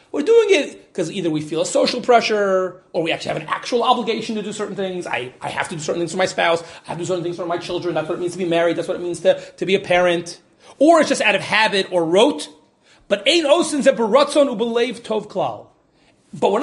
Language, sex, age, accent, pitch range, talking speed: English, male, 30-49, American, 175-255 Hz, 255 wpm